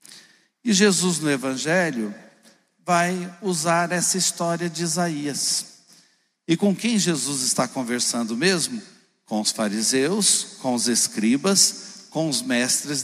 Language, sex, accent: Portuguese, male, Brazilian